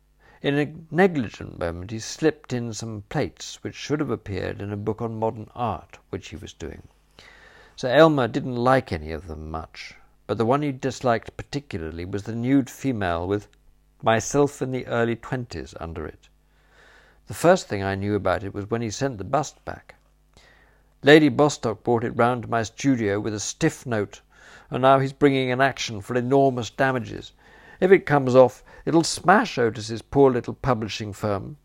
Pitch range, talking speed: 105-140 Hz, 180 wpm